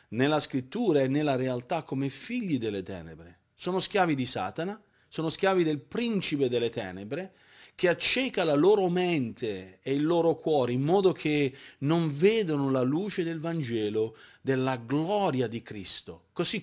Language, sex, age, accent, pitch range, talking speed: Italian, male, 40-59, native, 130-180 Hz, 150 wpm